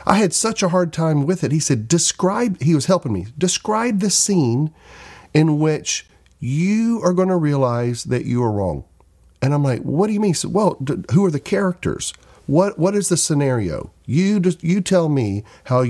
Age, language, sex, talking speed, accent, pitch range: 50-69, English, male, 200 wpm, American, 105-170 Hz